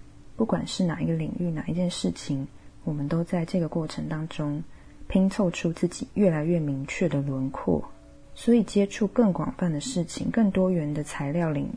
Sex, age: female, 20-39